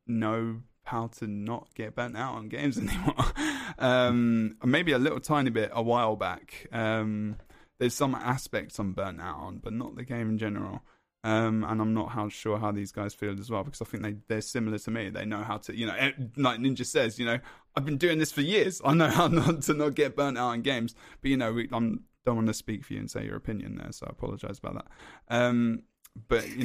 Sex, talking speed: male, 235 wpm